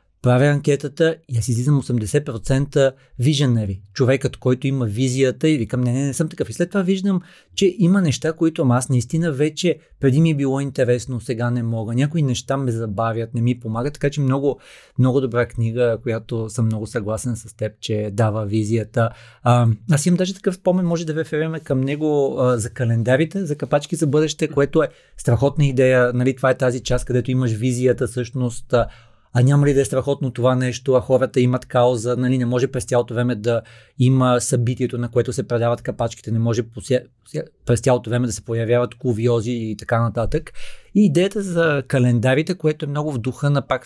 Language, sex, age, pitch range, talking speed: Bulgarian, male, 30-49, 120-145 Hz, 190 wpm